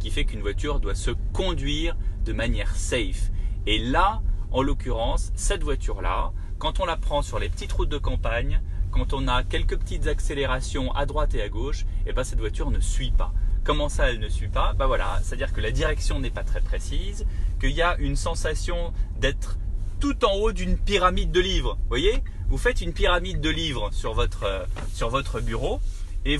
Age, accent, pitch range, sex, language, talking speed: 30-49, French, 90-145 Hz, male, French, 205 wpm